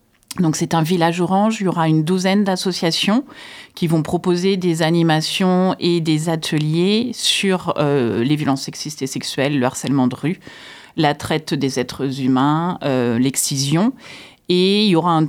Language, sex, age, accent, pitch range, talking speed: French, female, 40-59, French, 145-180 Hz, 165 wpm